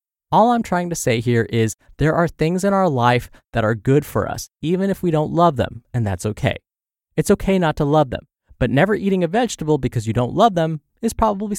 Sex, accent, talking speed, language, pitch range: male, American, 235 wpm, English, 120-175 Hz